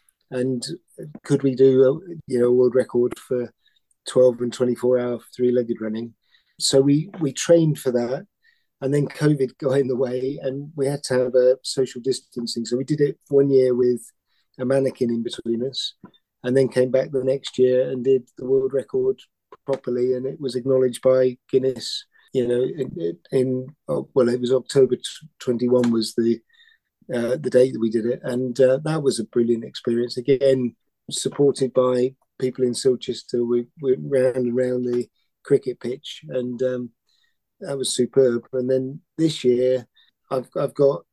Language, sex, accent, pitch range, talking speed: English, male, British, 125-135 Hz, 170 wpm